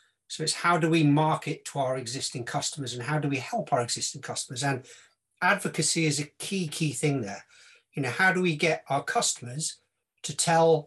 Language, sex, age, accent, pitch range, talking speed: English, male, 40-59, British, 145-175 Hz, 200 wpm